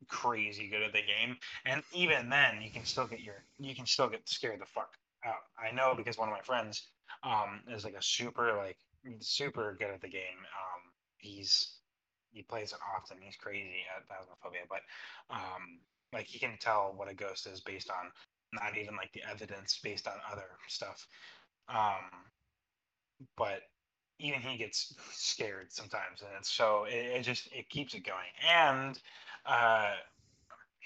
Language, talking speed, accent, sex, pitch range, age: English, 175 wpm, American, male, 105-125 Hz, 20-39